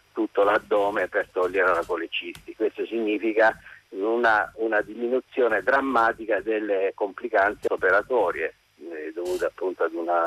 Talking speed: 115 wpm